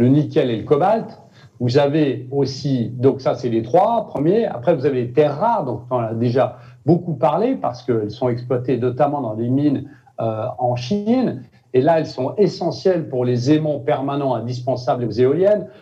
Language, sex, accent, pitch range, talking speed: French, male, French, 125-160 Hz, 190 wpm